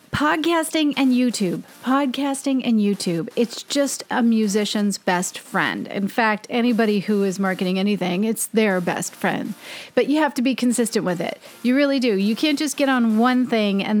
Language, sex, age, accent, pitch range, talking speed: English, female, 40-59, American, 200-260 Hz, 180 wpm